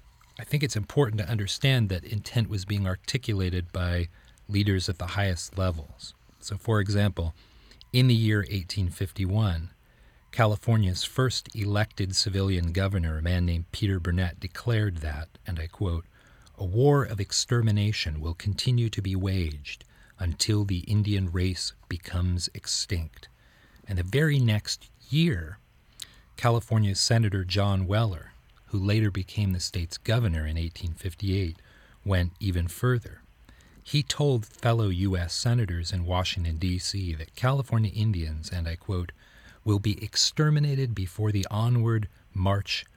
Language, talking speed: English, 135 wpm